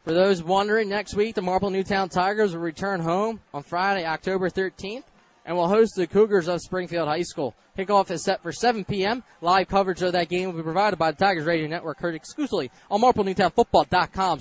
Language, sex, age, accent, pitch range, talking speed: English, male, 20-39, American, 165-200 Hz, 200 wpm